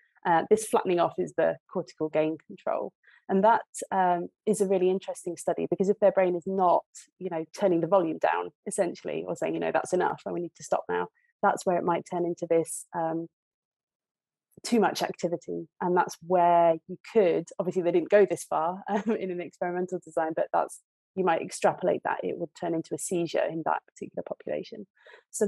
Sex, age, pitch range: female, 30-49, 170-195 Hz